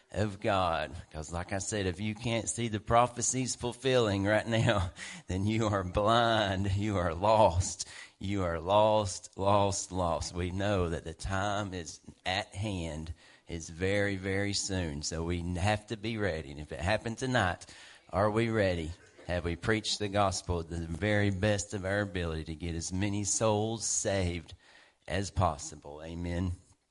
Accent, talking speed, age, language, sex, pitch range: American, 165 wpm, 40-59, English, male, 90-110 Hz